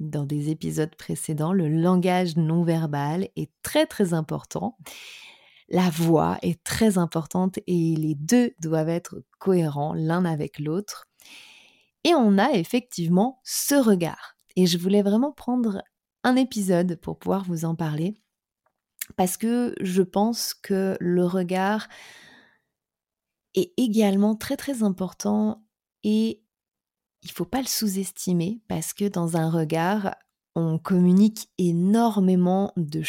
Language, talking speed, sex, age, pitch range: French, 130 wpm, female, 20-39, 165-205 Hz